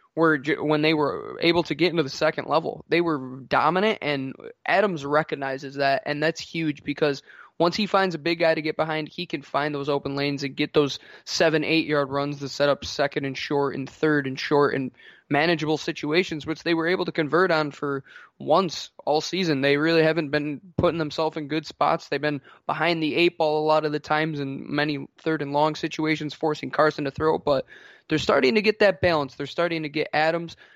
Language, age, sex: English, 20-39, male